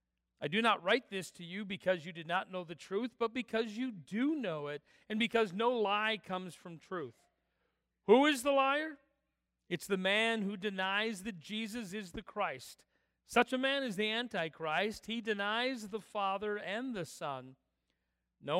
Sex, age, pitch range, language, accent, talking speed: male, 40-59, 160-230 Hz, English, American, 175 wpm